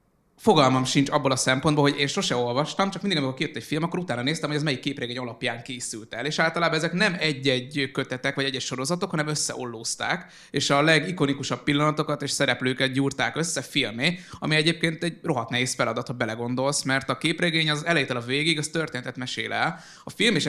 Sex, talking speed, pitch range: male, 195 wpm, 125-160 Hz